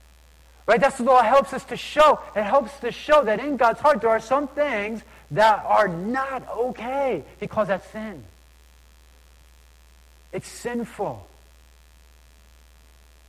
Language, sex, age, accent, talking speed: English, male, 40-59, American, 130 wpm